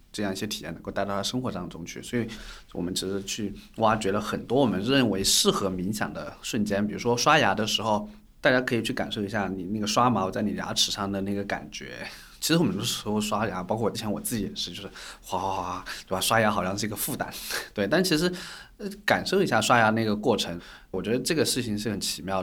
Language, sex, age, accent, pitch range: Chinese, male, 20-39, native, 100-130 Hz